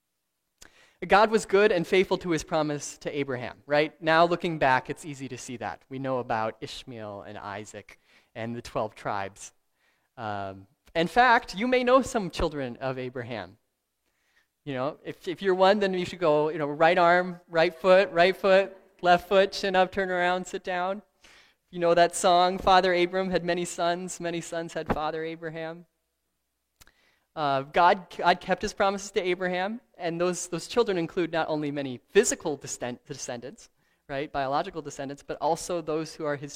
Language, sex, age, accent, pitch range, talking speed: English, male, 20-39, American, 135-180 Hz, 175 wpm